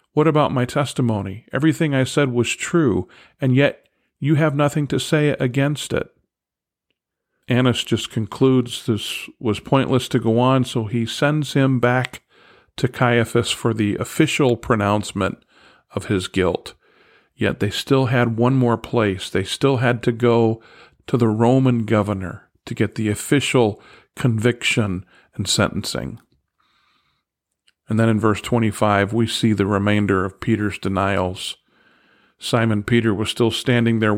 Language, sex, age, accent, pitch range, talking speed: English, male, 50-69, American, 105-125 Hz, 145 wpm